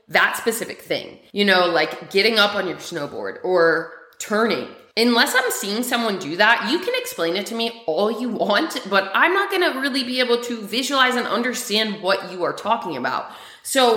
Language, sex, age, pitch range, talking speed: English, female, 30-49, 195-260 Hz, 200 wpm